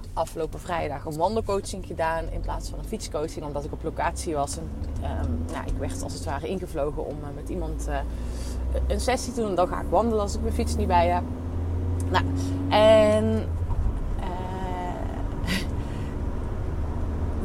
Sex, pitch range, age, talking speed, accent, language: female, 80-100 Hz, 30-49, 150 wpm, Dutch, Dutch